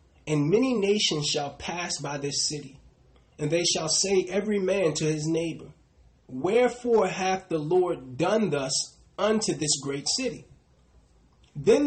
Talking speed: 140 wpm